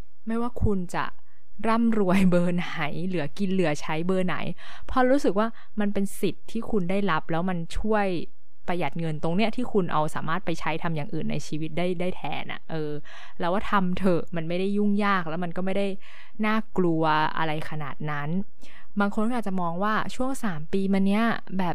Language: Thai